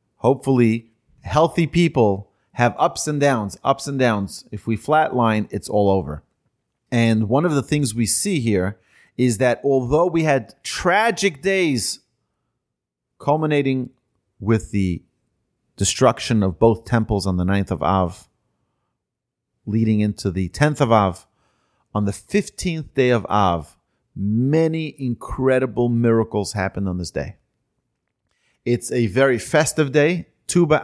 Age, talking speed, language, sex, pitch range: 40-59, 130 wpm, English, male, 110-150 Hz